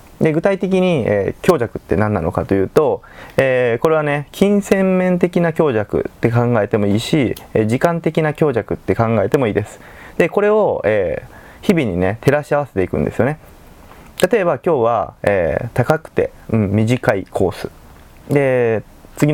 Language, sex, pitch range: Japanese, male, 110-175 Hz